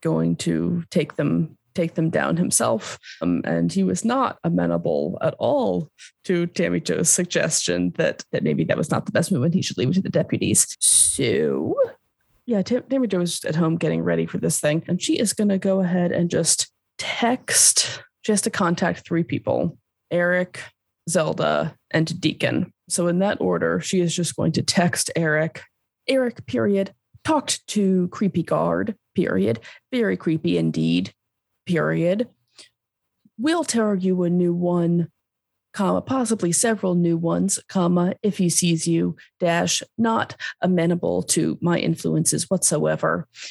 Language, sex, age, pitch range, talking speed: English, female, 20-39, 125-190 Hz, 155 wpm